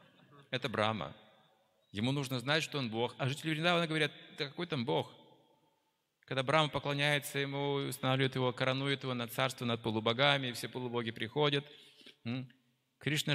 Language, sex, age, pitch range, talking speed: Russian, male, 30-49, 115-145 Hz, 145 wpm